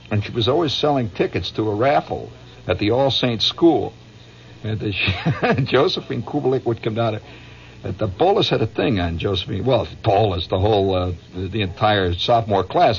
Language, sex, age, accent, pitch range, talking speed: English, male, 60-79, American, 90-115 Hz, 185 wpm